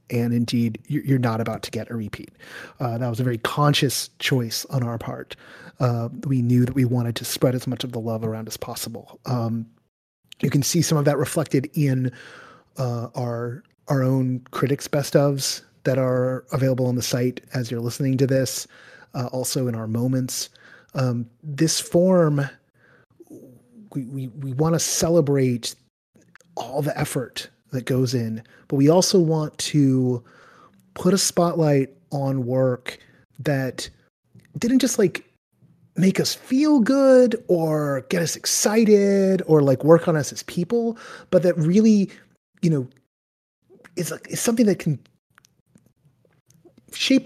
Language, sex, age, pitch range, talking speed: English, male, 30-49, 125-160 Hz, 155 wpm